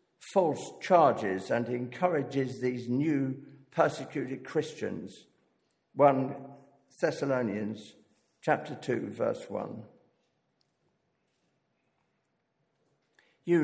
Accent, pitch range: British, 125-145 Hz